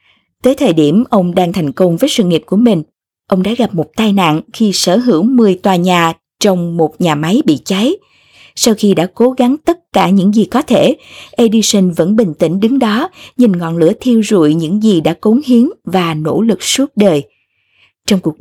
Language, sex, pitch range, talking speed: Vietnamese, female, 180-245 Hz, 210 wpm